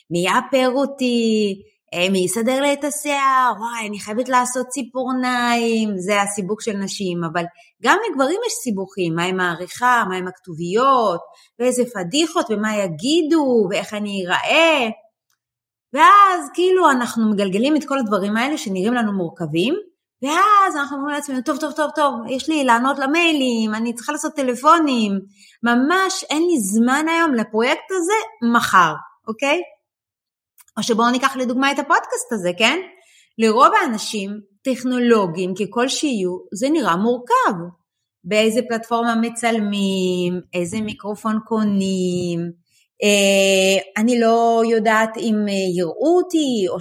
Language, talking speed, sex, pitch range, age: Hebrew, 130 wpm, female, 195-280 Hz, 30-49